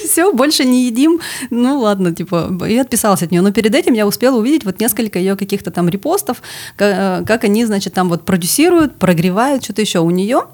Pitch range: 185-240 Hz